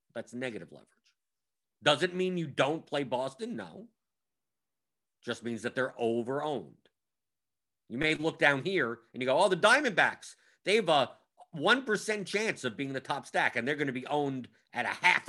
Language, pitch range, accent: English, 115-145 Hz, American